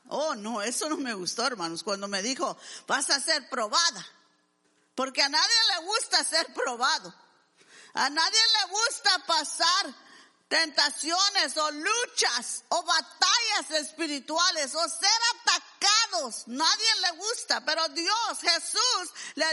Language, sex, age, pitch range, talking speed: English, female, 50-69, 300-405 Hz, 130 wpm